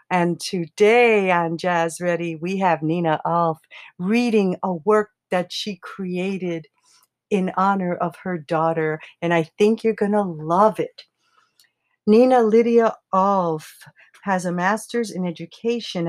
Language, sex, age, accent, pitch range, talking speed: English, female, 60-79, American, 170-215 Hz, 135 wpm